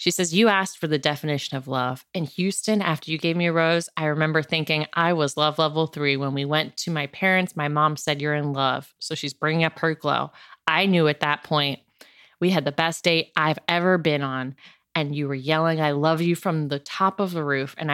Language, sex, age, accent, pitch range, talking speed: English, female, 30-49, American, 150-175 Hz, 240 wpm